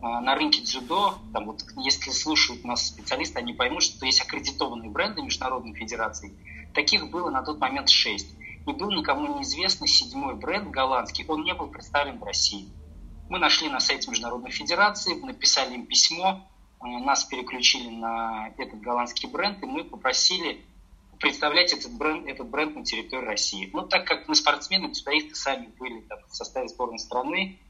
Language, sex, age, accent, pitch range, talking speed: Russian, male, 20-39, native, 115-155 Hz, 165 wpm